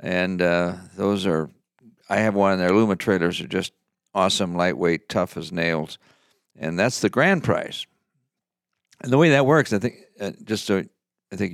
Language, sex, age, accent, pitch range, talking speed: English, male, 60-79, American, 90-110 Hz, 170 wpm